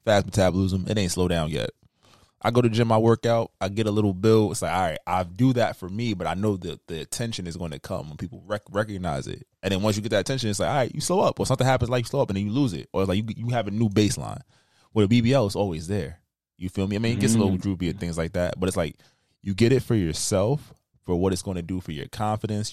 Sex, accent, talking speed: male, American, 310 wpm